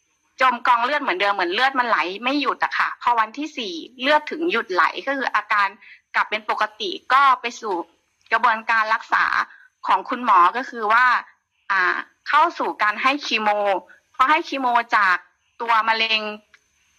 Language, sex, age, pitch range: Thai, female, 20-39, 215-290 Hz